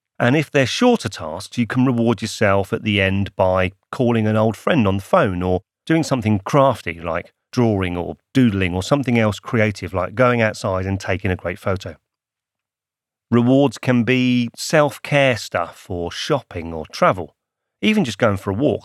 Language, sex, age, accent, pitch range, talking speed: English, male, 40-59, British, 100-130 Hz, 175 wpm